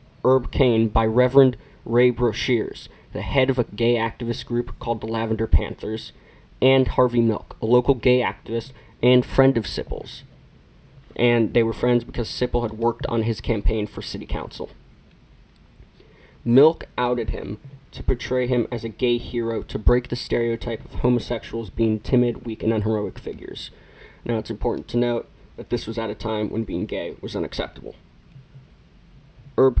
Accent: American